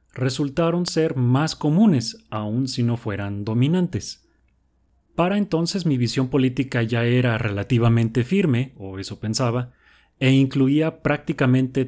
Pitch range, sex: 110-140 Hz, male